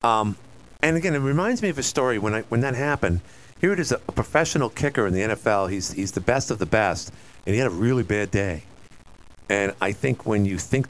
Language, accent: English, American